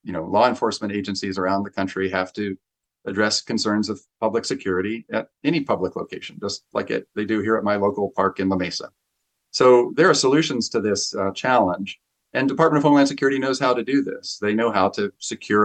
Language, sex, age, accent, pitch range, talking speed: English, male, 40-59, American, 95-110 Hz, 210 wpm